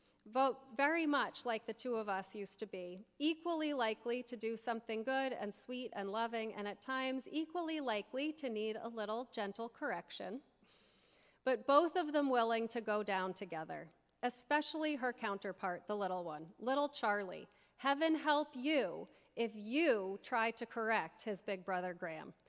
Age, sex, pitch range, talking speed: 30-49, female, 215-285 Hz, 165 wpm